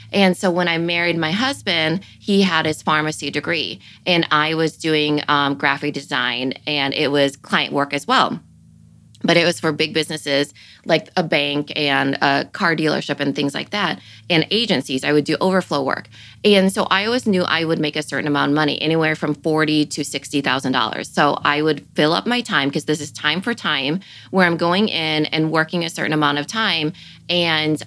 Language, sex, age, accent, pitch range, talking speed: English, female, 20-39, American, 145-170 Hz, 200 wpm